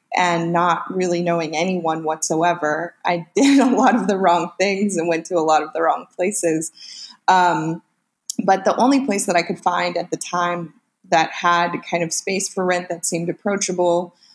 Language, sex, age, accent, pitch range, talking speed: English, female, 20-39, American, 165-190 Hz, 190 wpm